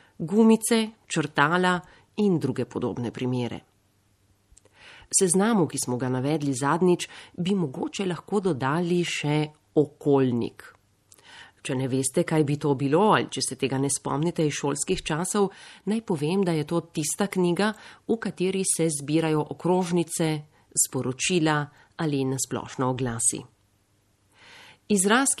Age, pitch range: 40-59, 135-180 Hz